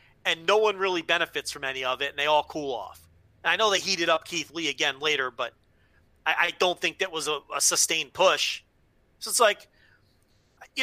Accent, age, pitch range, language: American, 30-49, 165-240 Hz, English